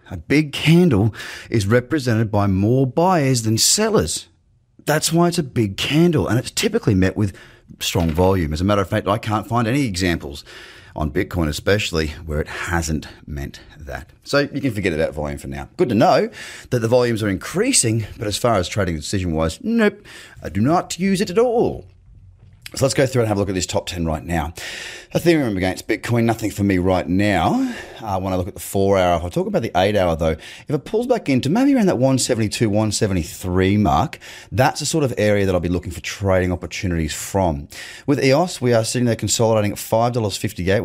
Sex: male